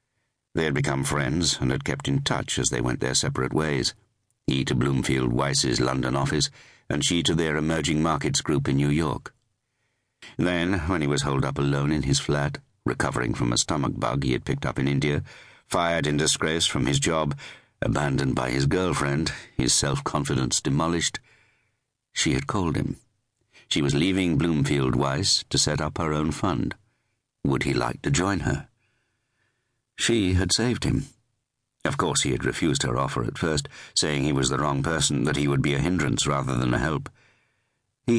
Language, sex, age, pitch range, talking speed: English, male, 60-79, 70-115 Hz, 180 wpm